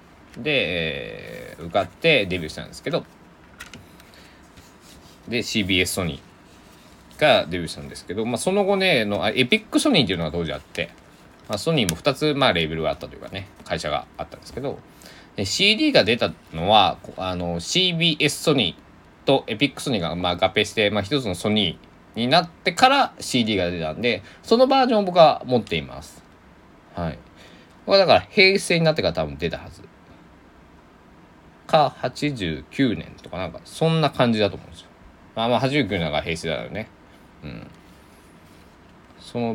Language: Japanese